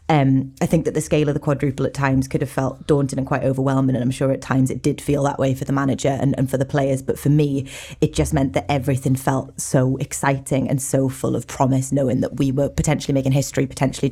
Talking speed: 255 wpm